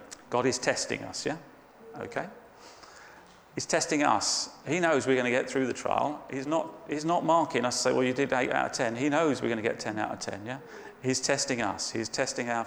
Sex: male